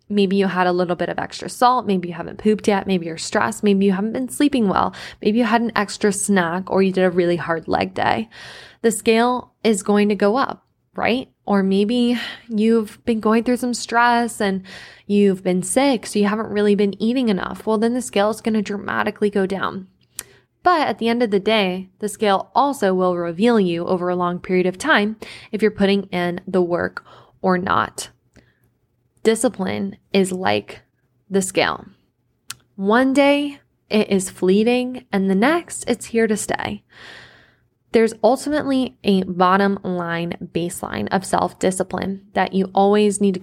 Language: English